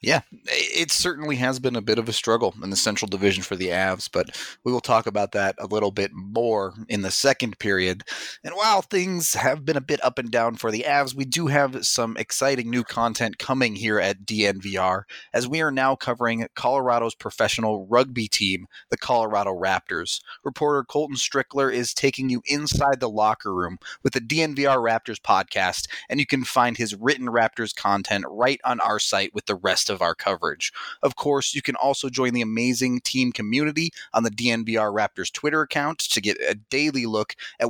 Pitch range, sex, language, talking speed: 110-135 Hz, male, English, 195 wpm